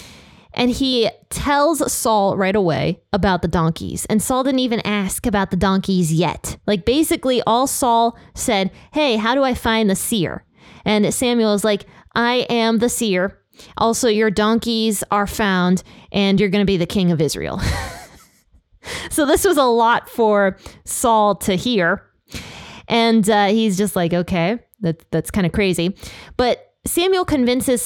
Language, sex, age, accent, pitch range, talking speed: English, female, 20-39, American, 190-235 Hz, 160 wpm